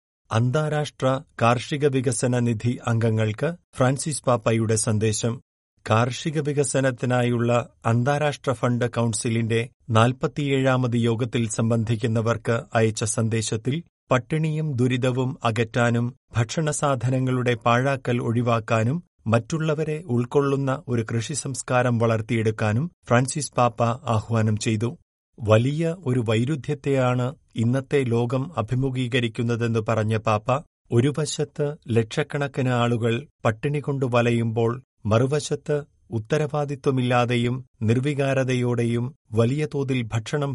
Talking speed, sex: 80 wpm, male